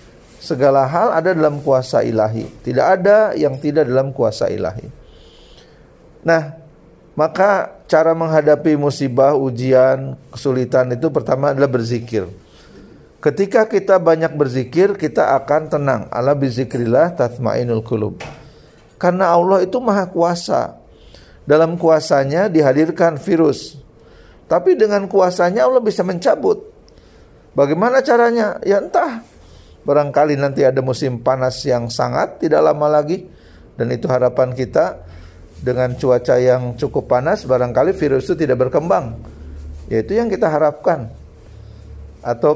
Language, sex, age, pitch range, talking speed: Indonesian, male, 40-59, 125-165 Hz, 115 wpm